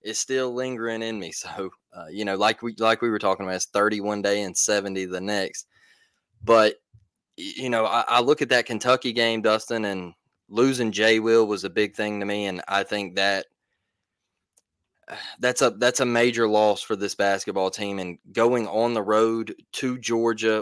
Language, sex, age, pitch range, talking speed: English, male, 20-39, 105-125 Hz, 190 wpm